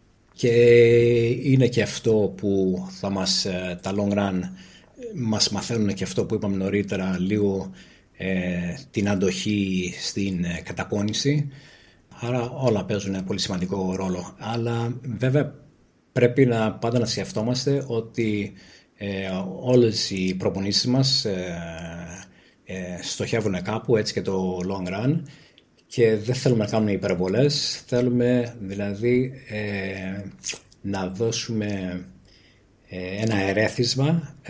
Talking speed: 110 wpm